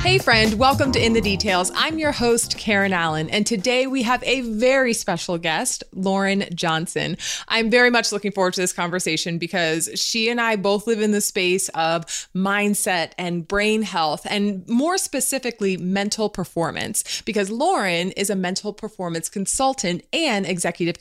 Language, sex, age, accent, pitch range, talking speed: English, female, 20-39, American, 185-250 Hz, 165 wpm